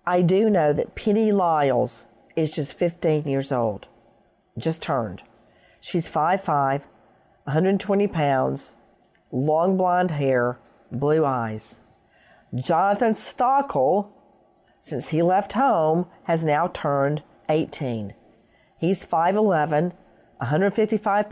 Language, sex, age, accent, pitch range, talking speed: English, female, 50-69, American, 140-190 Hz, 100 wpm